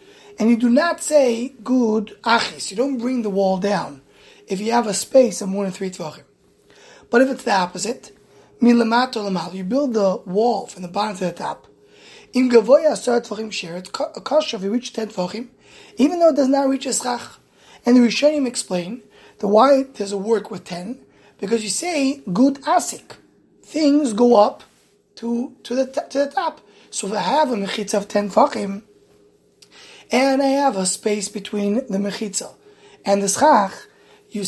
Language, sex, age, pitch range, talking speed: English, male, 20-39, 200-265 Hz, 160 wpm